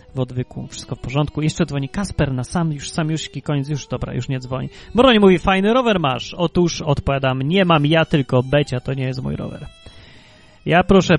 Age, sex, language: 30-49, male, Polish